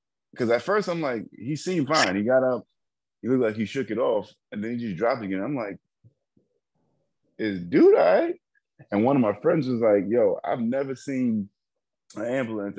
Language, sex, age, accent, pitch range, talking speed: English, male, 20-39, American, 95-120 Hz, 200 wpm